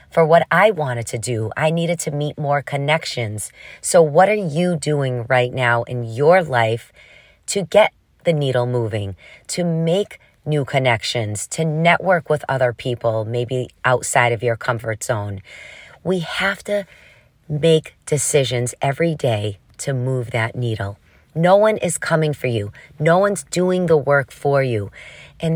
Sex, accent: female, American